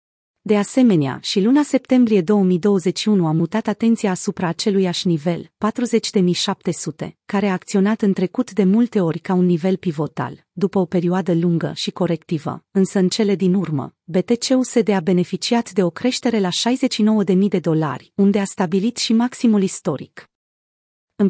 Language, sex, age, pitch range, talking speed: Romanian, female, 30-49, 175-220 Hz, 150 wpm